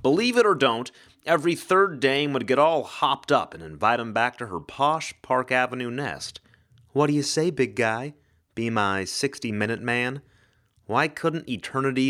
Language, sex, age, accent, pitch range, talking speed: English, male, 30-49, American, 115-155 Hz, 175 wpm